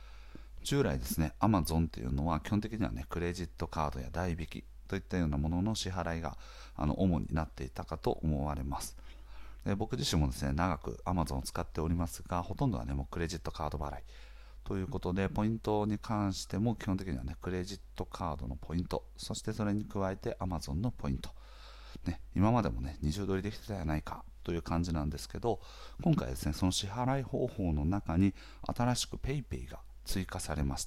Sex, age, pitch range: male, 40-59, 75-100 Hz